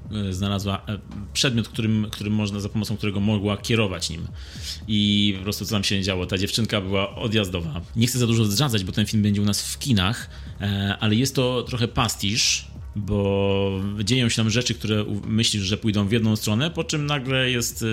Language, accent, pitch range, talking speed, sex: Polish, native, 100-120 Hz, 185 wpm, male